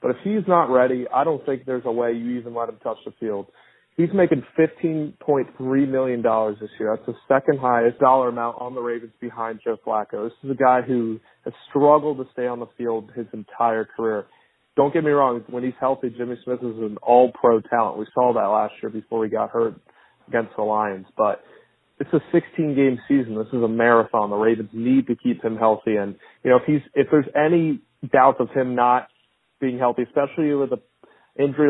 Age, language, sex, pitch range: 30-49, English, male, 115-130 Hz